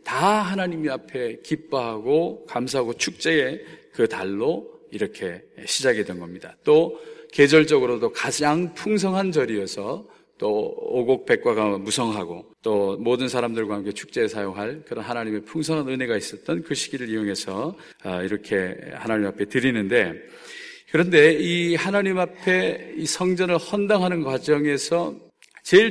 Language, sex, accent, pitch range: Korean, male, native, 145-195 Hz